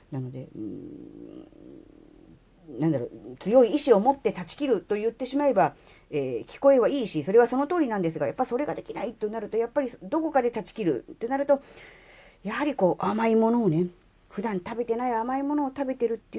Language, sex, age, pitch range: Japanese, female, 40-59, 165-275 Hz